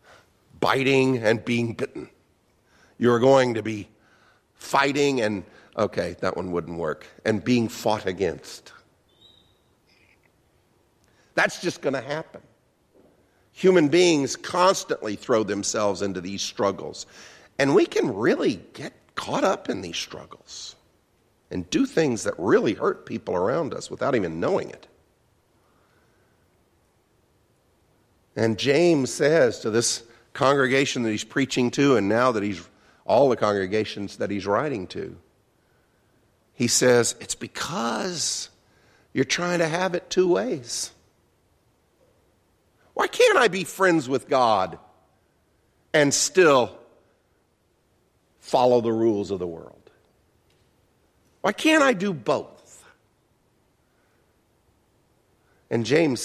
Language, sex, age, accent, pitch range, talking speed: English, male, 50-69, American, 105-165 Hz, 115 wpm